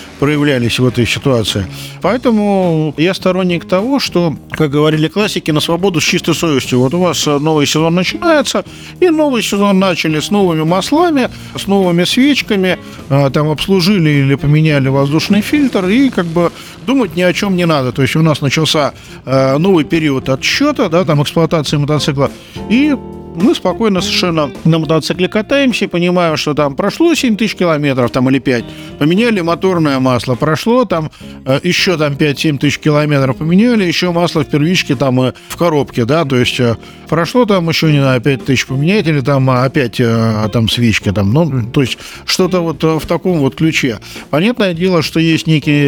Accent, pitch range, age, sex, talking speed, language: native, 140-185 Hz, 50-69, male, 165 wpm, Russian